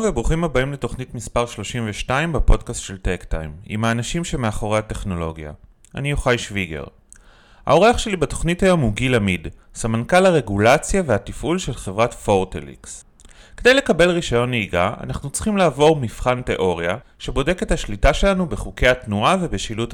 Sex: male